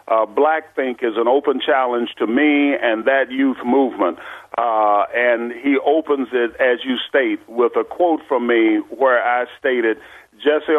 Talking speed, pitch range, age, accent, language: 165 wpm, 120-160 Hz, 50-69, American, English